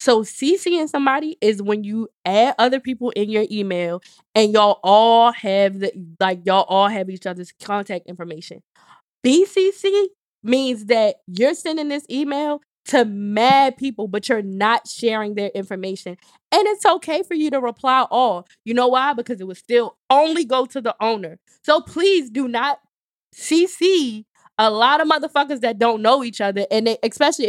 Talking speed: 170 wpm